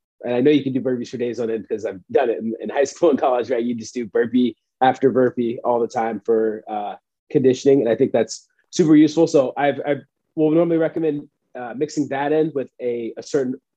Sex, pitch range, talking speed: male, 115-150 Hz, 240 wpm